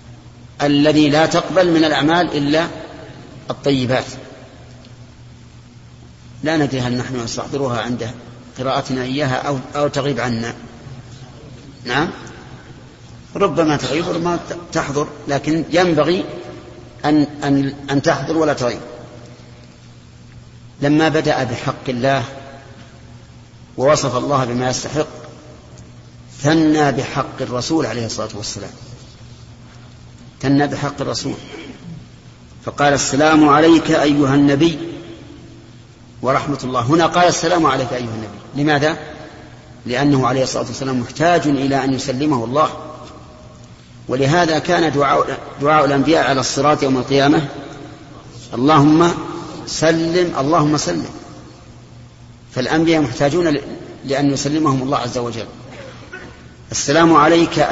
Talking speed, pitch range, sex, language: 95 wpm, 125-155 Hz, male, Arabic